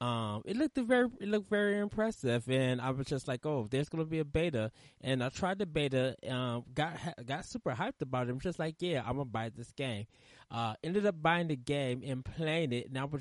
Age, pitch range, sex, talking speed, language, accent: 20-39, 120-155 Hz, male, 235 wpm, English, American